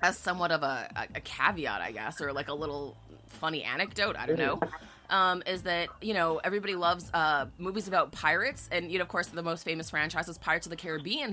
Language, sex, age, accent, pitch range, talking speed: English, female, 20-39, American, 160-195 Hz, 220 wpm